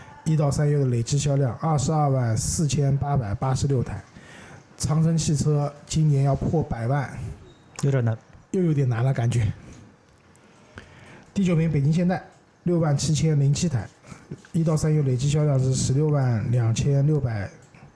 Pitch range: 125-155 Hz